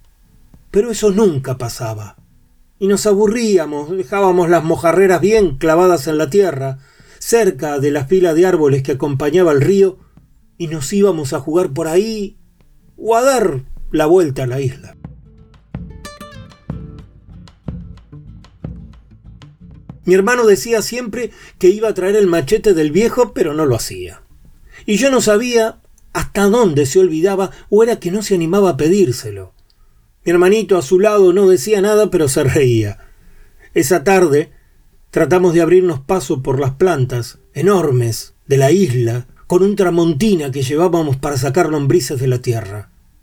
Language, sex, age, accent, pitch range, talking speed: Spanish, male, 40-59, Argentinian, 135-195 Hz, 150 wpm